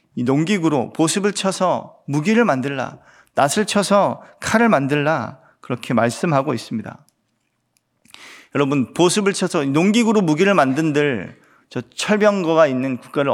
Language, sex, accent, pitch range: Korean, male, native, 130-185 Hz